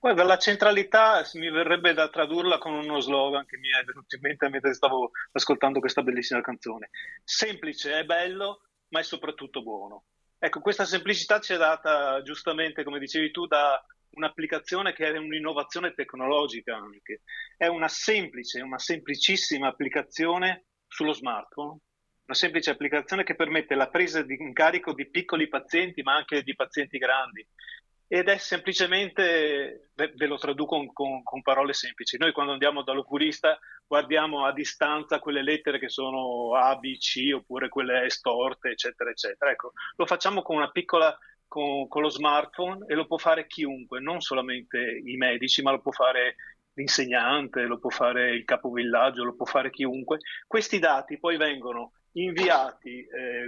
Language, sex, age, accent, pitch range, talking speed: Italian, male, 30-49, native, 135-170 Hz, 155 wpm